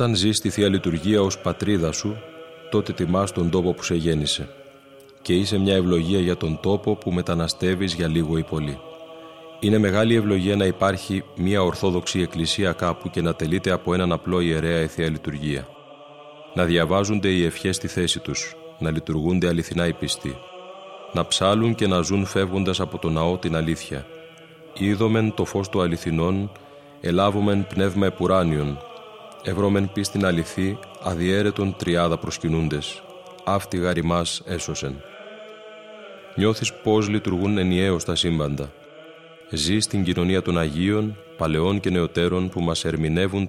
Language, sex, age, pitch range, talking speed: Greek, male, 30-49, 85-105 Hz, 145 wpm